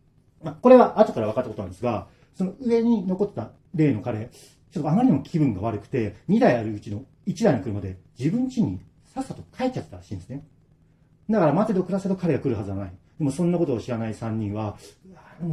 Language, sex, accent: Japanese, male, native